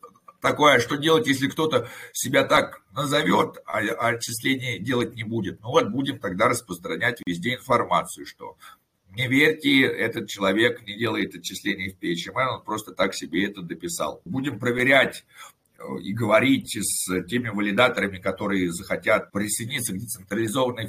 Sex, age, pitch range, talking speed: male, 50-69, 110-135 Hz, 140 wpm